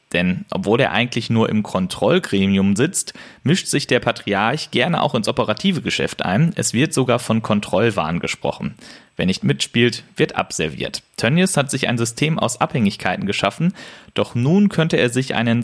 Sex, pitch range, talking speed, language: male, 110-145 Hz, 165 wpm, German